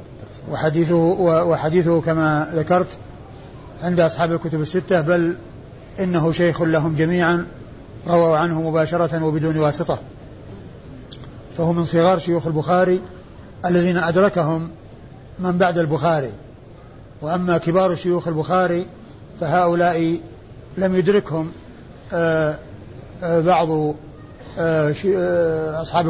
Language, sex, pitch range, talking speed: Arabic, male, 150-175 Hz, 85 wpm